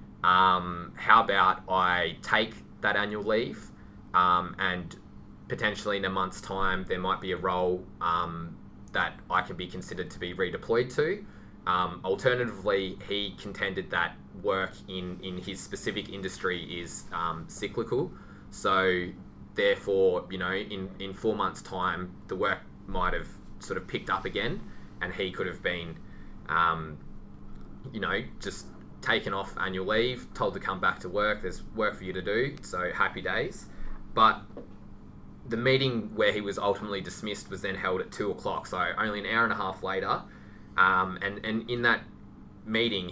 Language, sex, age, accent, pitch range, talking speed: English, male, 20-39, Australian, 90-105 Hz, 165 wpm